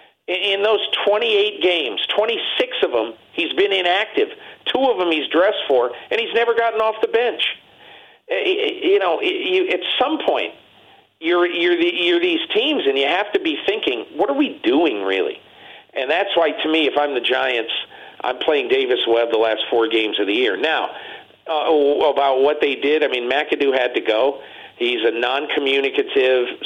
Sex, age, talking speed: male, 50-69, 190 wpm